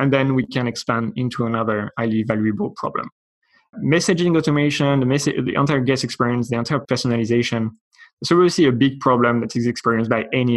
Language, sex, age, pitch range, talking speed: English, male, 20-39, 115-135 Hz, 175 wpm